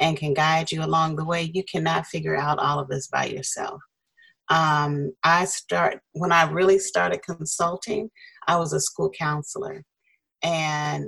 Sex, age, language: female, 30-49, English